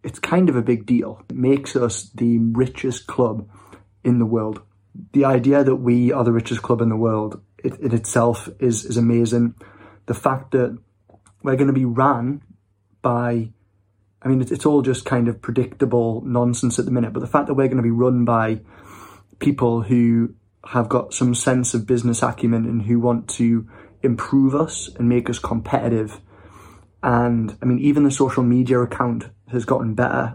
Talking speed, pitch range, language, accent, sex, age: 180 wpm, 115-130 Hz, English, British, male, 20-39